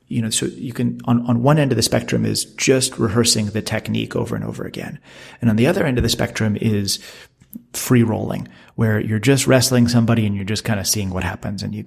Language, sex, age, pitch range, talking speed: English, male, 30-49, 105-120 Hz, 240 wpm